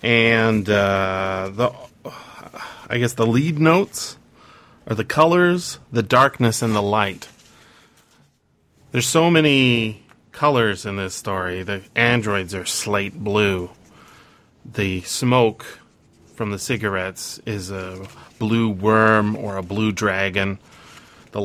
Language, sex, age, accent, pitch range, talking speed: English, male, 30-49, American, 100-120 Hz, 120 wpm